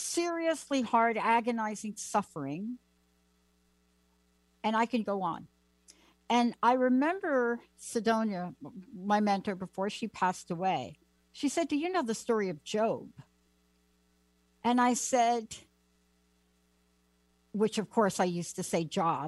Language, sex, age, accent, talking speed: English, female, 60-79, American, 120 wpm